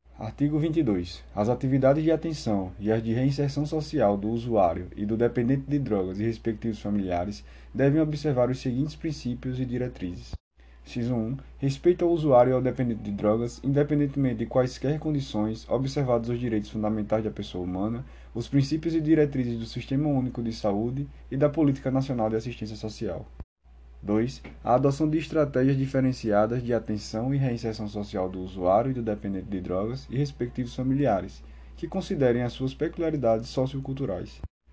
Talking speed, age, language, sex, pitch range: 160 wpm, 20-39, Portuguese, male, 105-140 Hz